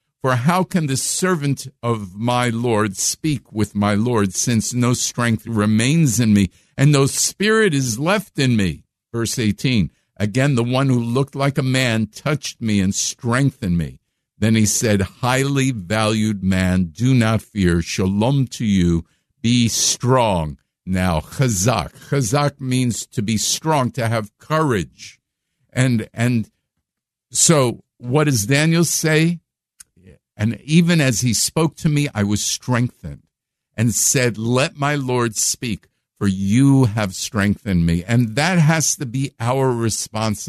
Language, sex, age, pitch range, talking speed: English, male, 50-69, 110-145 Hz, 145 wpm